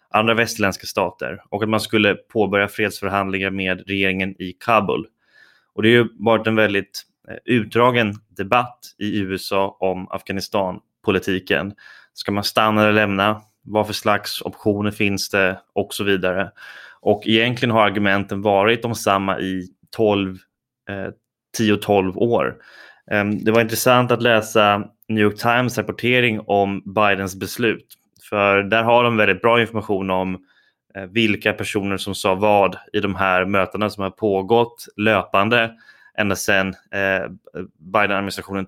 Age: 20-39